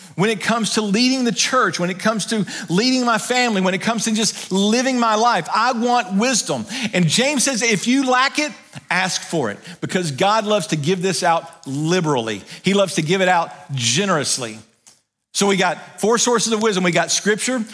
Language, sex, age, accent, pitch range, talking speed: English, male, 40-59, American, 150-215 Hz, 205 wpm